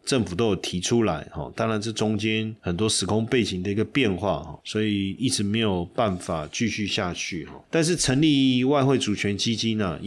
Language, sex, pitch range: Chinese, male, 95-120 Hz